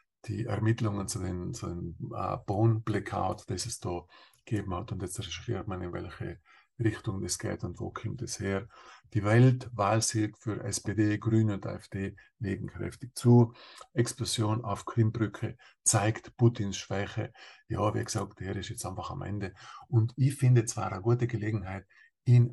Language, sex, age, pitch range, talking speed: German, male, 50-69, 105-120 Hz, 155 wpm